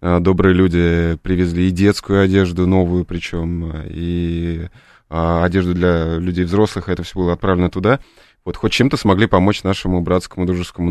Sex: male